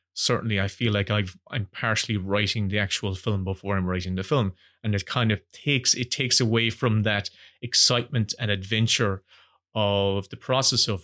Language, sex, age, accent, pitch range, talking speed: English, male, 30-49, Irish, 100-125 Hz, 175 wpm